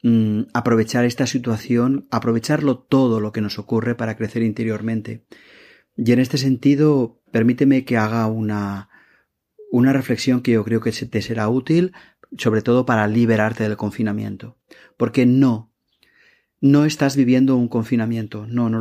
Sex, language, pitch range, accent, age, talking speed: male, Spanish, 115-135 Hz, Spanish, 30-49, 140 wpm